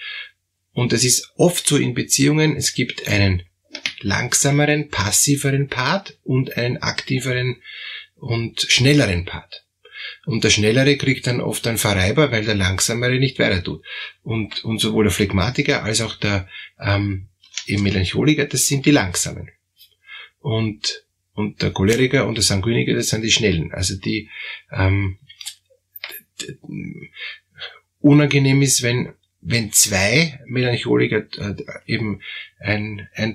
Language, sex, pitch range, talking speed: German, male, 105-135 Hz, 130 wpm